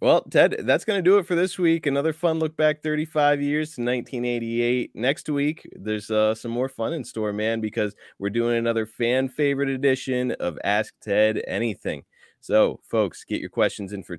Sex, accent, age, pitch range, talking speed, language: male, American, 20-39, 95-120 Hz, 195 wpm, English